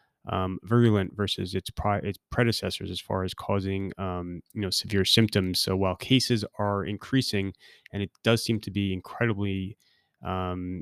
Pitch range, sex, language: 95-110 Hz, male, English